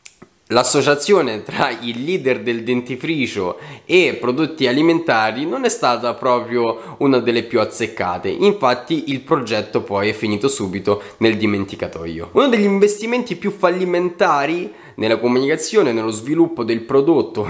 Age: 20-39